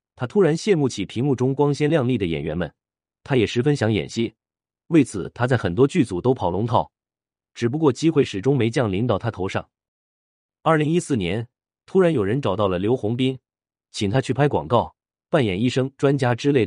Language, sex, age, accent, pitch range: Chinese, male, 30-49, native, 95-140 Hz